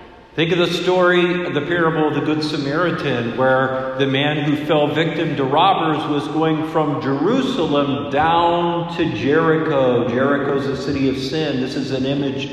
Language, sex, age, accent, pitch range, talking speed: English, male, 50-69, American, 135-175 Hz, 170 wpm